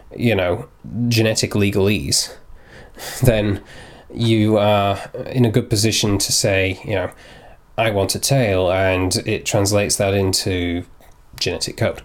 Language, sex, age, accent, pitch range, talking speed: English, male, 20-39, British, 95-115 Hz, 130 wpm